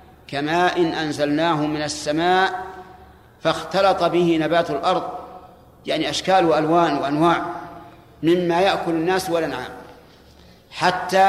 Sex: male